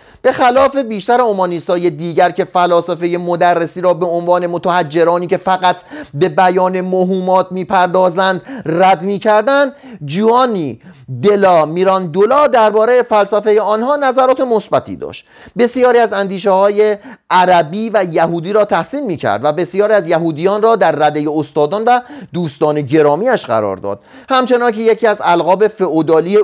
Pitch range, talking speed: 165-220 Hz, 135 wpm